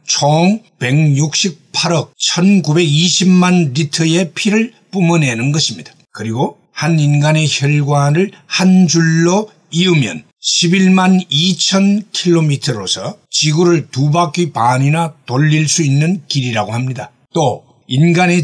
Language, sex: Korean, male